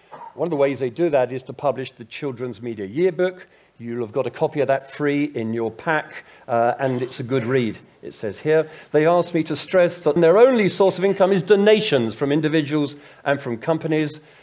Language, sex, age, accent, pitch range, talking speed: English, male, 50-69, British, 125-160 Hz, 215 wpm